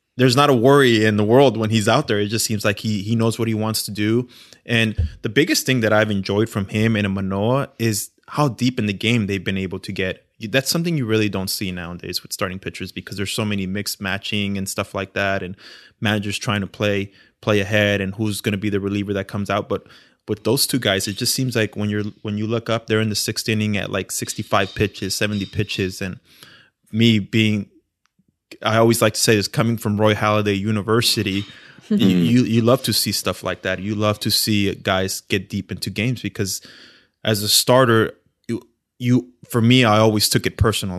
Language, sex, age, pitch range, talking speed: English, male, 20-39, 100-115 Hz, 225 wpm